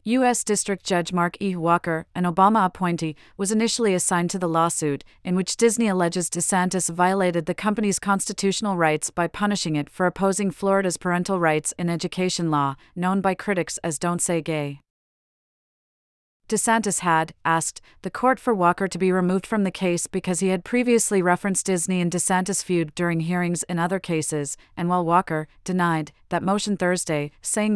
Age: 40-59